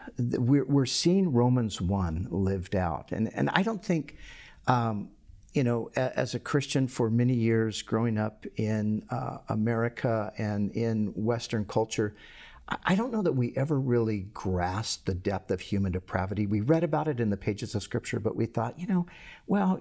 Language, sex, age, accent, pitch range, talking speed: English, male, 50-69, American, 100-130 Hz, 170 wpm